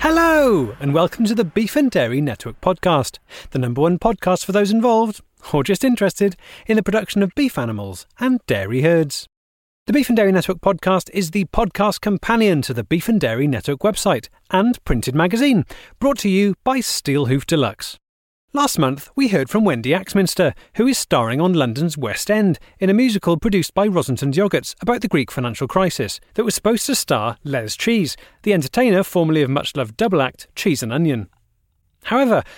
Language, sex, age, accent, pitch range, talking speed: English, male, 30-49, British, 130-200 Hz, 185 wpm